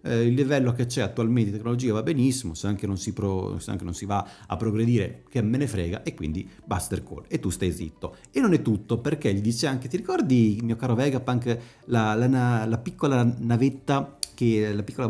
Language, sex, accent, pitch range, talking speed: Italian, male, native, 95-125 Hz, 205 wpm